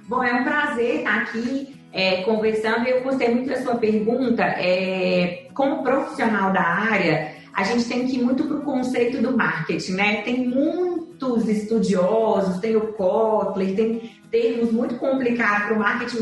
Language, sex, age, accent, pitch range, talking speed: Portuguese, female, 30-49, Brazilian, 205-240 Hz, 160 wpm